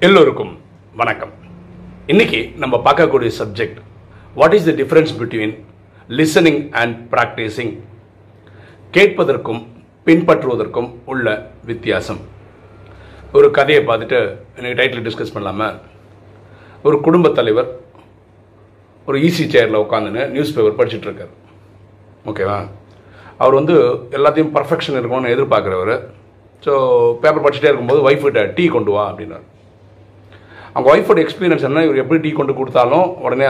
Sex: male